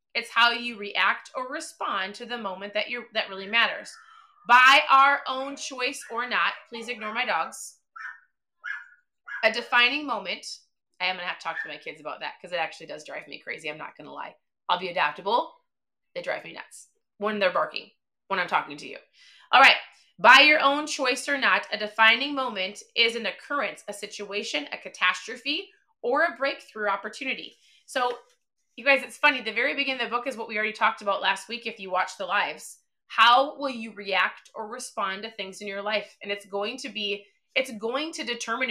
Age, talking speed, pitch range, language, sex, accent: 20-39, 205 wpm, 205-270 Hz, English, female, American